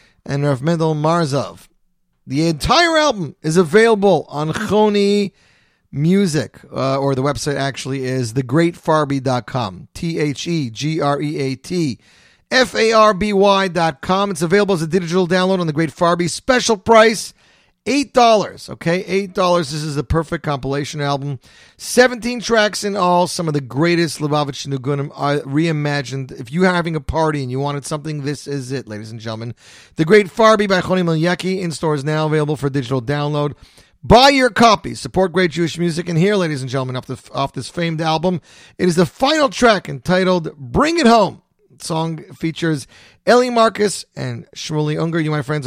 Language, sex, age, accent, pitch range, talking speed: English, male, 40-59, American, 140-190 Hz, 160 wpm